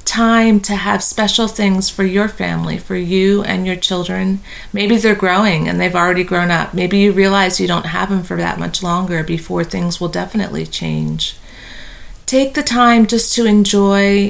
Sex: female